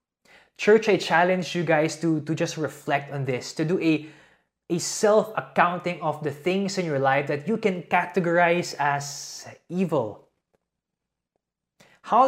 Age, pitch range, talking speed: 20-39, 140-185 Hz, 140 wpm